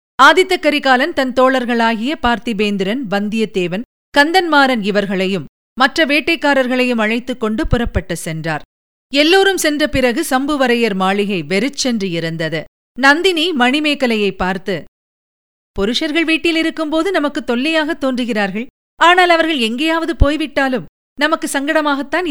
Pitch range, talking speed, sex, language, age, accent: 225-310 Hz, 95 wpm, female, Tamil, 50-69, native